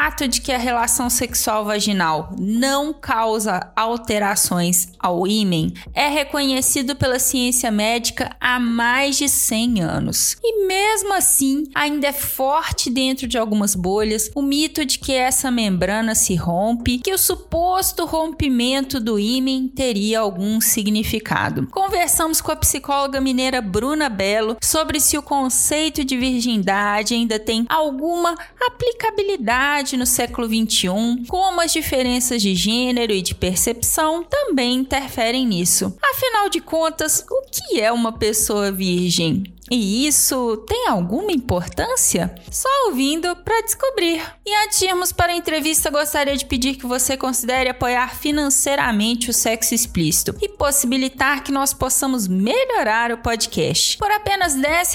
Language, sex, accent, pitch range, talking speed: Portuguese, female, Brazilian, 225-300 Hz, 140 wpm